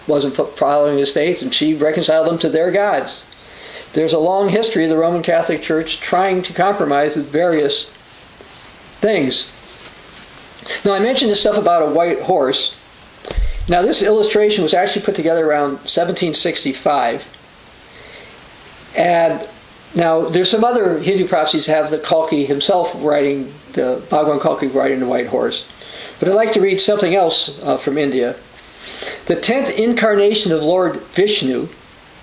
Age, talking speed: 50-69, 150 wpm